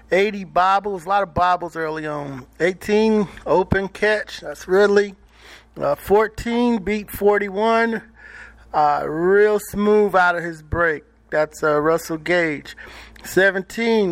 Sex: male